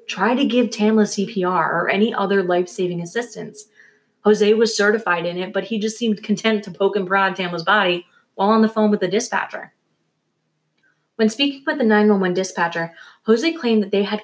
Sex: female